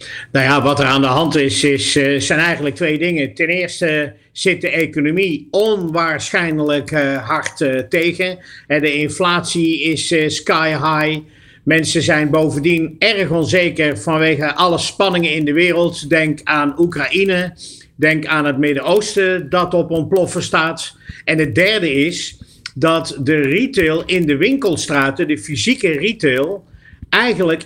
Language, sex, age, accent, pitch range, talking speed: Dutch, male, 50-69, Dutch, 145-180 Hz, 135 wpm